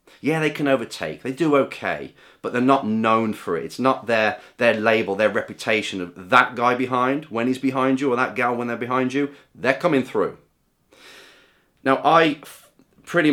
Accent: British